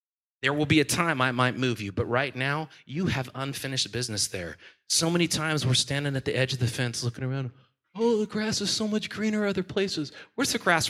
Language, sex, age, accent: English, male, 30-49, American